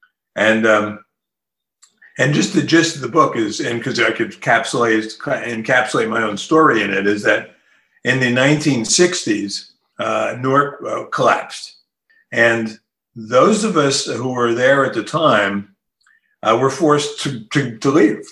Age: 50-69